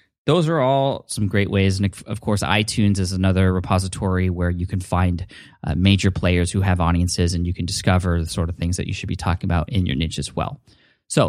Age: 20-39